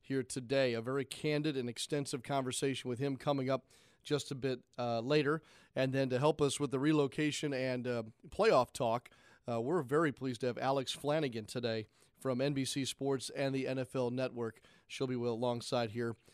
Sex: male